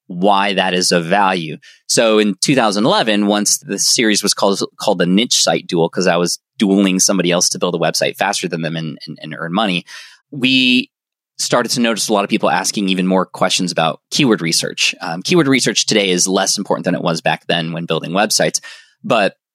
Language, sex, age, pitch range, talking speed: English, male, 20-39, 95-150 Hz, 205 wpm